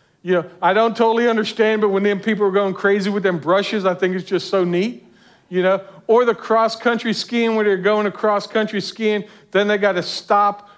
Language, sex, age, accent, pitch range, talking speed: English, male, 50-69, American, 175-210 Hz, 215 wpm